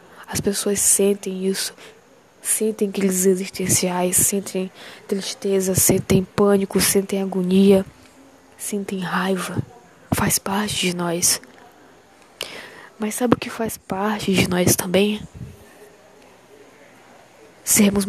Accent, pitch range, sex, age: Brazilian, 190-220 Hz, female, 10-29